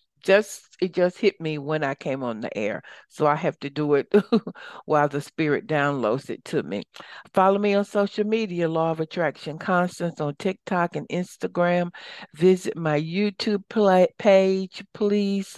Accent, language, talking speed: American, English, 165 wpm